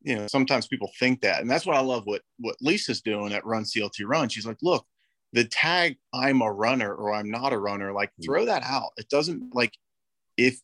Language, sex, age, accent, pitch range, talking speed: English, male, 30-49, American, 105-135 Hz, 225 wpm